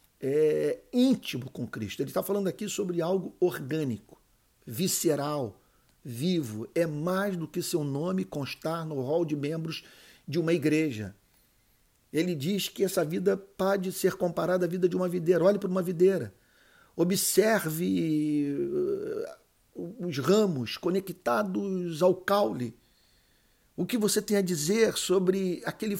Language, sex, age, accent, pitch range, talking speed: Portuguese, male, 50-69, Brazilian, 160-215 Hz, 135 wpm